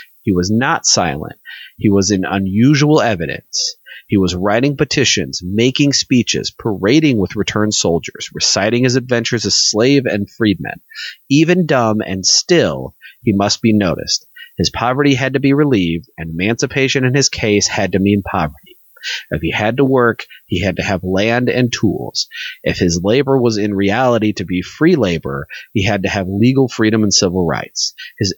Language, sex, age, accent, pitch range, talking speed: English, male, 30-49, American, 95-135 Hz, 170 wpm